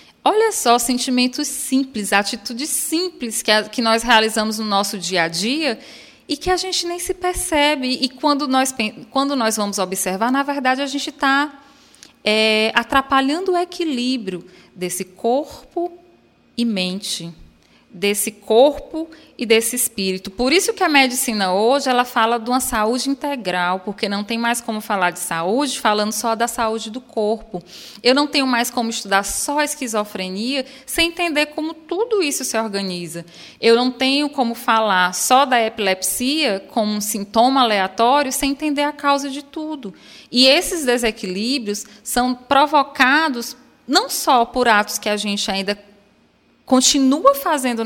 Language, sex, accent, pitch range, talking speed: Portuguese, female, Brazilian, 210-280 Hz, 150 wpm